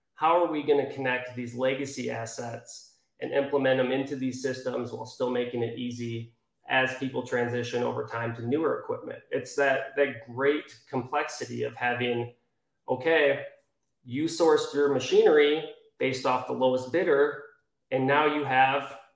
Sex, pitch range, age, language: male, 130-155 Hz, 30-49, English